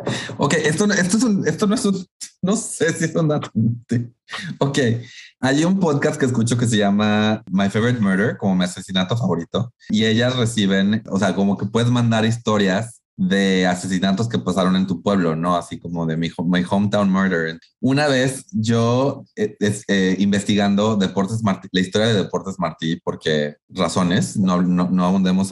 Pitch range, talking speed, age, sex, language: 95-125 Hz, 175 wpm, 30-49, male, Spanish